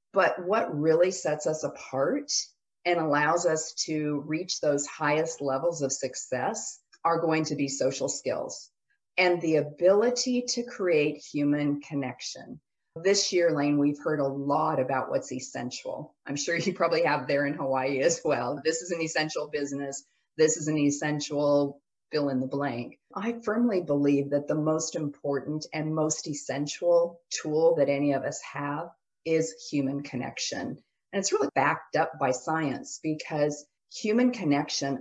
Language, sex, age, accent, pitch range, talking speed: English, female, 40-59, American, 145-170 Hz, 155 wpm